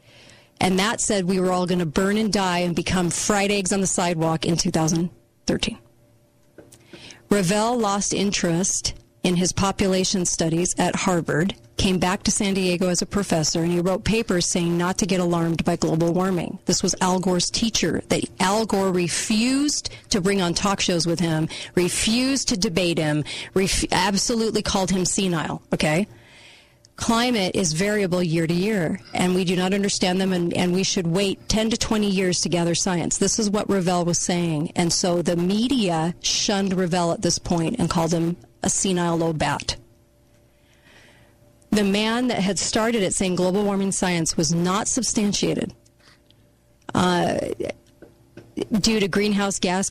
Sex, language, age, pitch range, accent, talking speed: female, English, 40-59, 170-200 Hz, American, 165 wpm